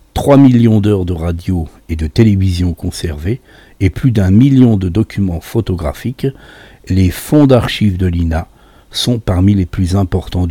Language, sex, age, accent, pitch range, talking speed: French, male, 60-79, French, 90-115 Hz, 150 wpm